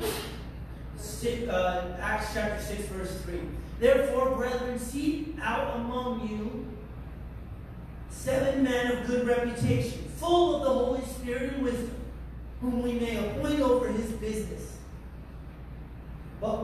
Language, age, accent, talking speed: English, 40-59, American, 115 wpm